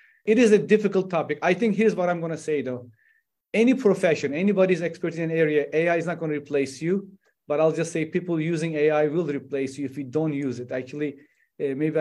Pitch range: 150-180 Hz